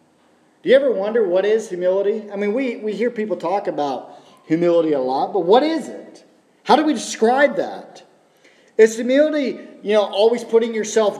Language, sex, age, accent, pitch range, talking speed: English, male, 40-59, American, 190-270 Hz, 180 wpm